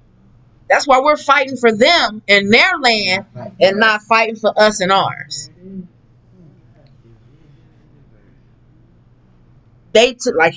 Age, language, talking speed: 30-49, English, 110 wpm